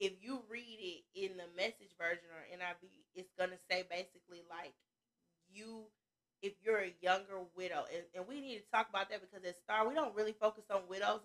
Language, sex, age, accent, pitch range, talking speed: English, female, 20-39, American, 175-215 Hz, 210 wpm